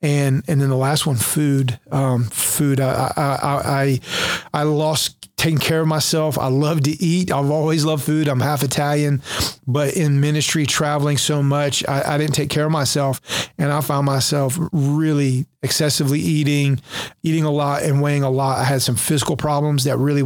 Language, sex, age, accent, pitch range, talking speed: English, male, 40-59, American, 130-150 Hz, 185 wpm